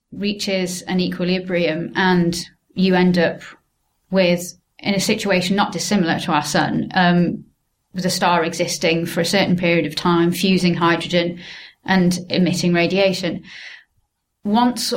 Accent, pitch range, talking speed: British, 170-190 Hz, 130 wpm